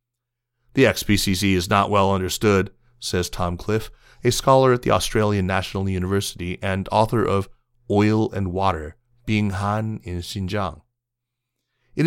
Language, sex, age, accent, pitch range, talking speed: English, male, 30-49, American, 95-120 Hz, 130 wpm